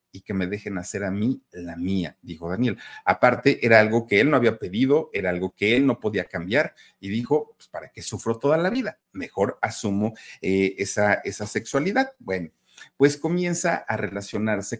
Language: Spanish